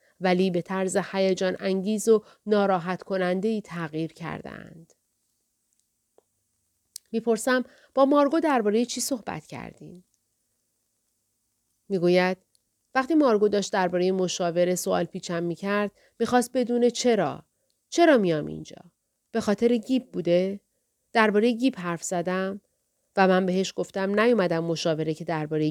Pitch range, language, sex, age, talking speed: 180-250 Hz, Persian, female, 30-49, 115 wpm